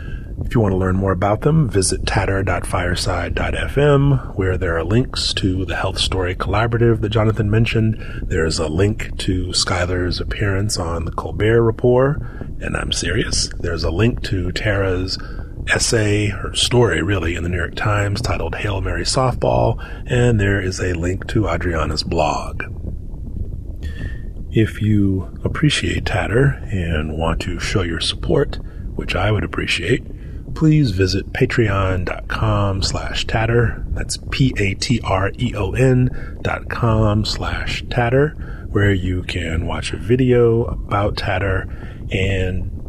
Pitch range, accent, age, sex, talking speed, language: 85-110 Hz, American, 30-49, male, 135 wpm, English